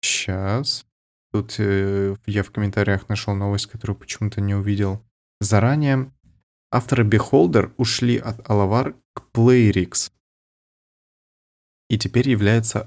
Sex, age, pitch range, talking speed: male, 20-39, 95-115 Hz, 105 wpm